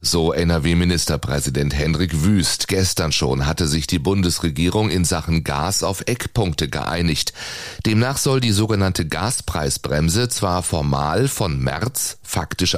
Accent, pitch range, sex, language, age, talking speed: German, 80-105 Hz, male, German, 30-49, 120 wpm